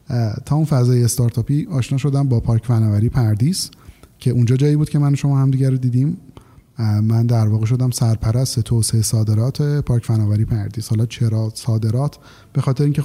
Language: Persian